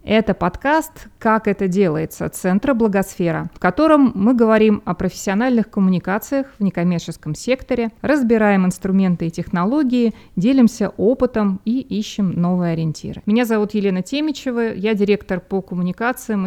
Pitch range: 180-220 Hz